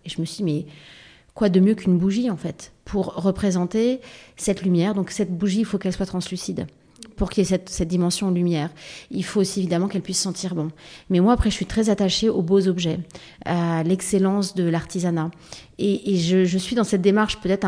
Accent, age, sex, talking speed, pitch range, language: French, 30-49, female, 215 wpm, 170-200 Hz, French